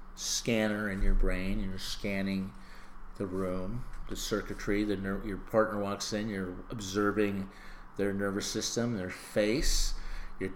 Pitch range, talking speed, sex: 95-115 Hz, 130 wpm, male